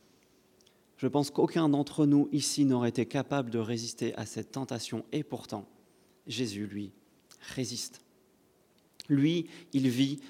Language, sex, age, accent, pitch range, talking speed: French, male, 30-49, French, 125-160 Hz, 130 wpm